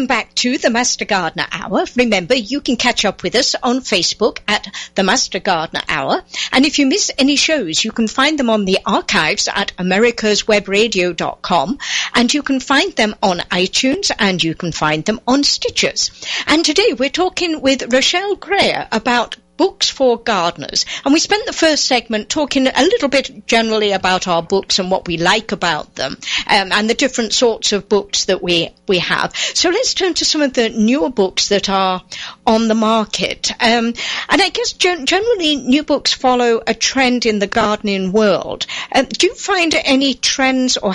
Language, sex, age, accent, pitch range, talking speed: English, female, 50-69, British, 200-275 Hz, 185 wpm